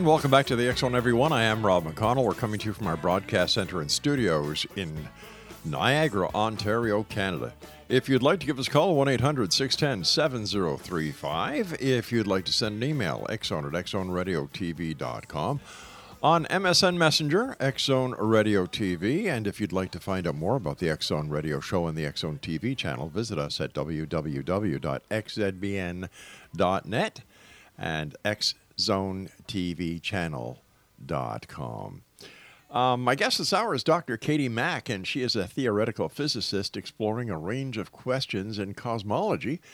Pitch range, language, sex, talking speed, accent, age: 90-135 Hz, English, male, 145 wpm, American, 50-69